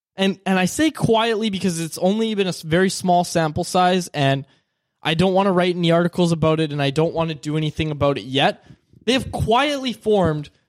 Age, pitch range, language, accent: 20-39, 145-185 Hz, English, American